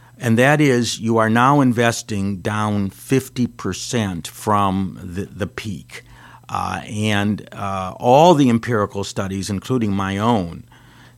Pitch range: 100-125 Hz